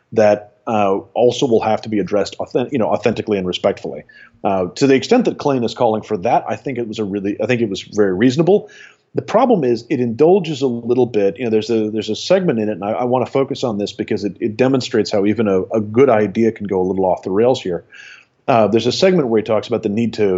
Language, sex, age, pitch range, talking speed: English, male, 30-49, 105-130 Hz, 265 wpm